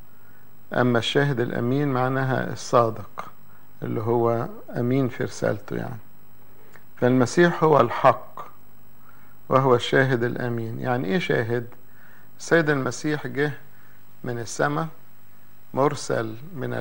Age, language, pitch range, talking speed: 50-69, English, 115-135 Hz, 95 wpm